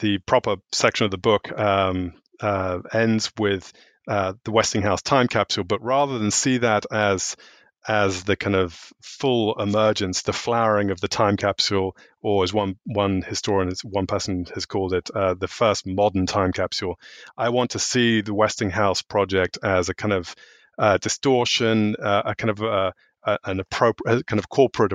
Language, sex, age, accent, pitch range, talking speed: English, male, 30-49, British, 95-110 Hz, 175 wpm